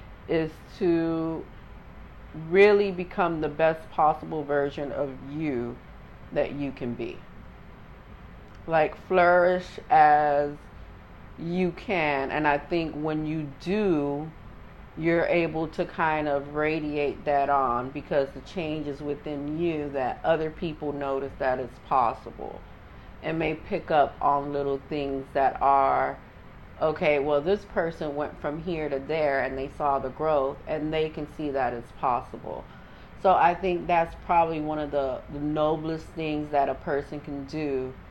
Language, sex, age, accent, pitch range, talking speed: English, female, 40-59, American, 140-165 Hz, 145 wpm